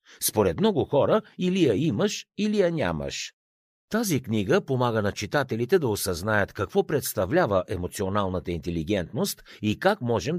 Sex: male